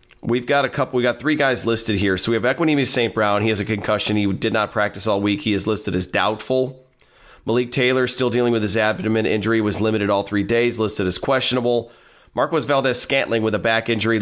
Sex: male